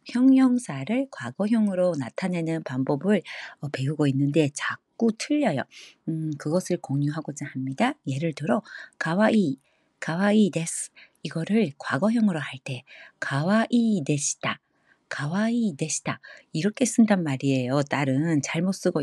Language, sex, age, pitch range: Korean, female, 40-59, 150-220 Hz